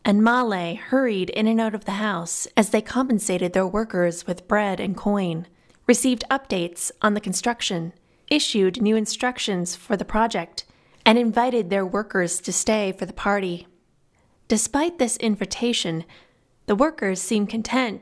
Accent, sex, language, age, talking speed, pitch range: American, female, English, 20-39, 150 wpm, 180-225 Hz